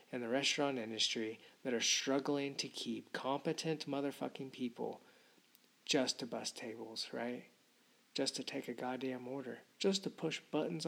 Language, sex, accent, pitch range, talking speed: English, male, American, 125-160 Hz, 150 wpm